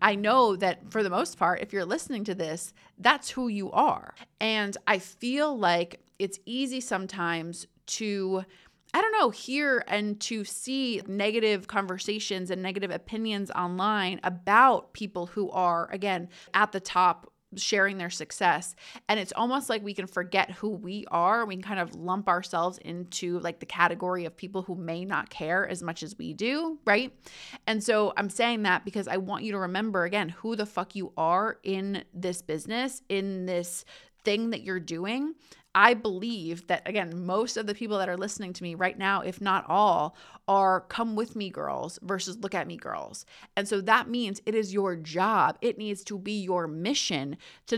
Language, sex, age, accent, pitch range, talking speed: English, female, 30-49, American, 180-220 Hz, 185 wpm